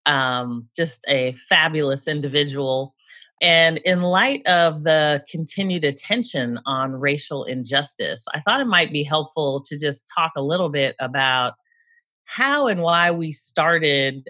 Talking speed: 140 wpm